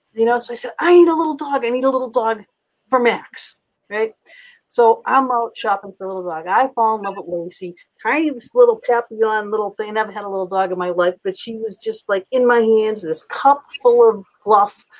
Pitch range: 190-235 Hz